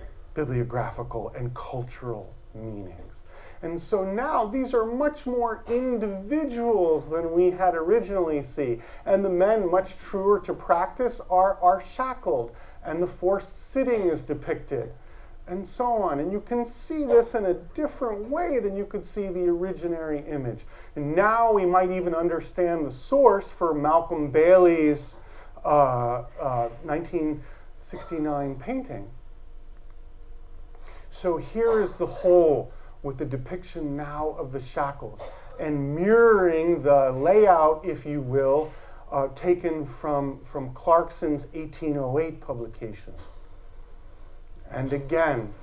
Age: 40-59